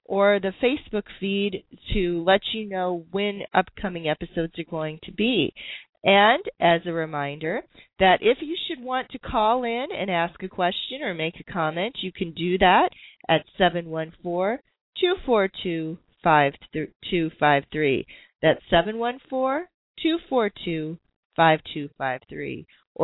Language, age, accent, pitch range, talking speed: English, 40-59, American, 175-225 Hz, 110 wpm